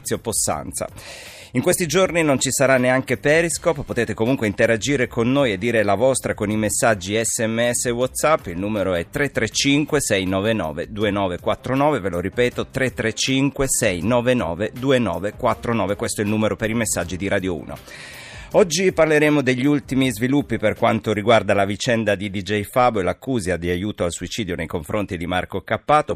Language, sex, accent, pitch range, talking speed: Italian, male, native, 105-130 Hz, 160 wpm